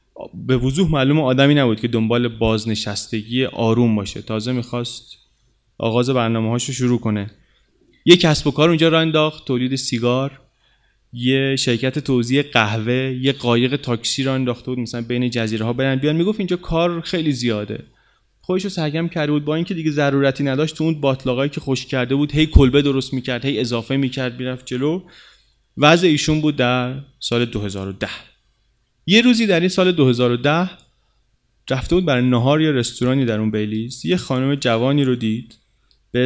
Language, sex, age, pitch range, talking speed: Persian, male, 30-49, 115-145 Hz, 170 wpm